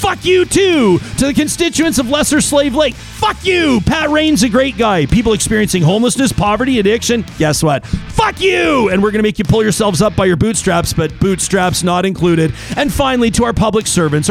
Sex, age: male, 40-59